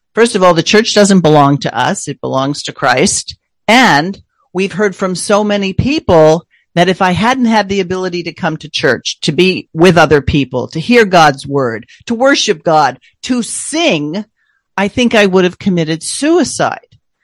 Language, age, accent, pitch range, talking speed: English, 50-69, American, 155-200 Hz, 180 wpm